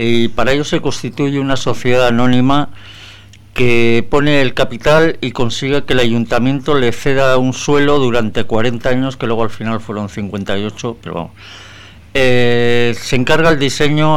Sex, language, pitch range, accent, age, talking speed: male, Spanish, 105-130 Hz, Spanish, 60-79, 160 wpm